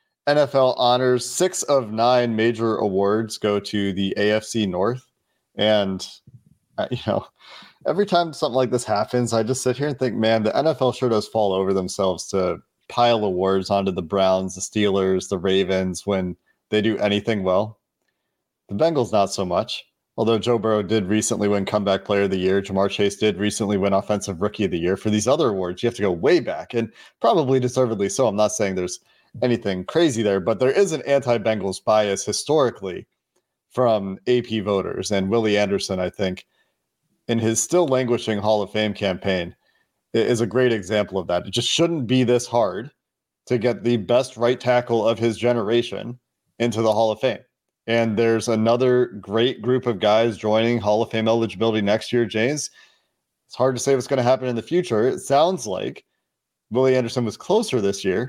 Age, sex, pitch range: 30-49, male, 100-125 Hz